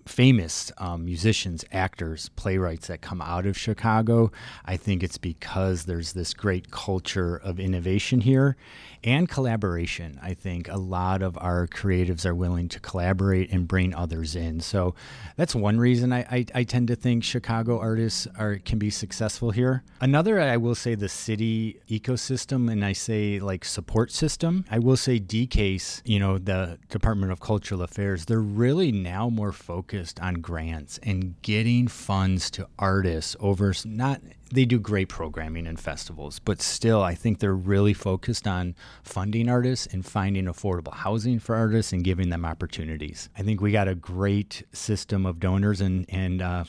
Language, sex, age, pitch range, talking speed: English, male, 30-49, 90-115 Hz, 170 wpm